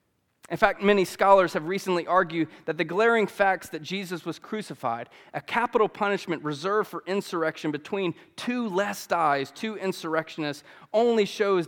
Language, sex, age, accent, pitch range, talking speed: English, male, 30-49, American, 160-205 Hz, 150 wpm